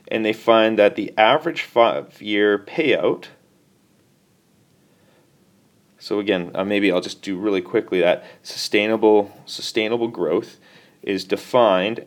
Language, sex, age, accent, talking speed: English, male, 30-49, American, 110 wpm